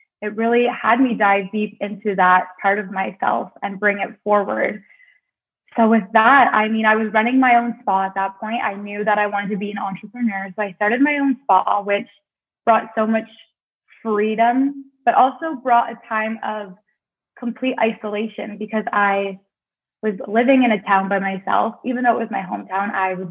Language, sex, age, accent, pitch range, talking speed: English, female, 20-39, American, 205-235 Hz, 190 wpm